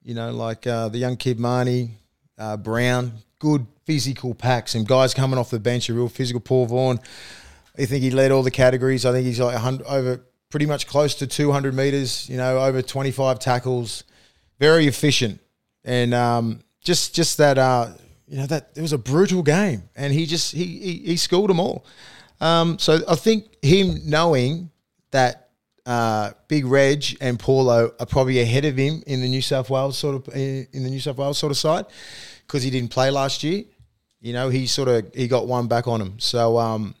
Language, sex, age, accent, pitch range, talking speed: English, male, 20-39, Australian, 120-145 Hz, 200 wpm